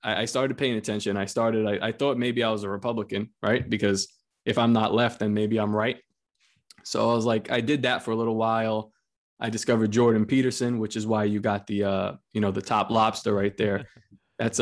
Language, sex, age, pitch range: English, male, 20-39, 110-130 Hz